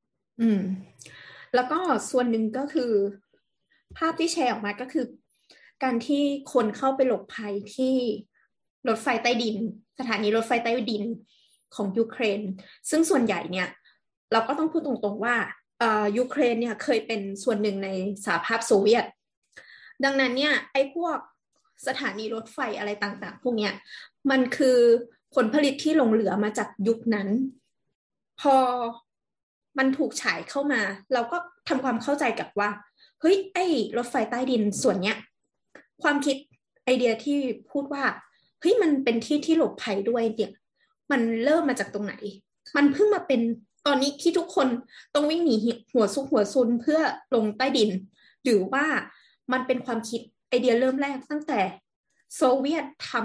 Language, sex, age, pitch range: Thai, female, 20-39, 215-280 Hz